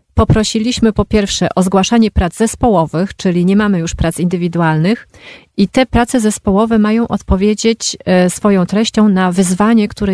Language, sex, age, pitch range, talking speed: Polish, female, 40-59, 180-220 Hz, 140 wpm